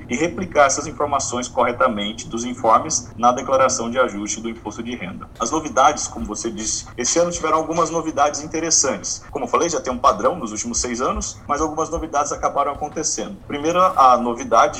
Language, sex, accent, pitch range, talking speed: Portuguese, male, Brazilian, 115-150 Hz, 185 wpm